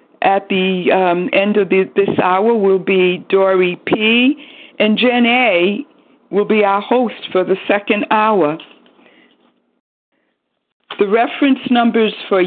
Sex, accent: female, American